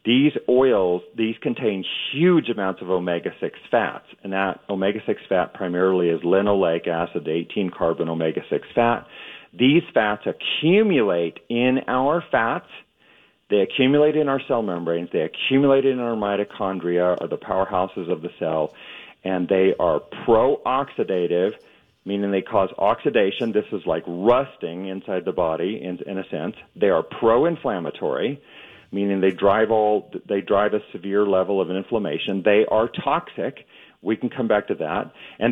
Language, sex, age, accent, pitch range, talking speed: English, male, 40-59, American, 95-130 Hz, 145 wpm